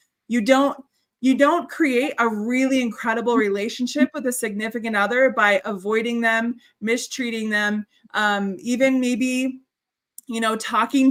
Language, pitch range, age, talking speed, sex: English, 220-275 Hz, 20-39, 130 wpm, female